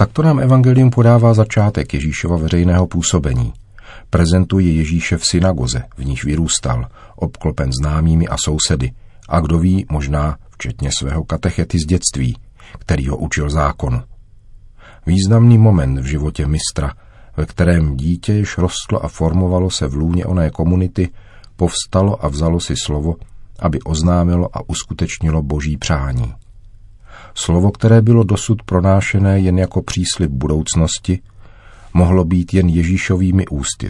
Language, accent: Czech, native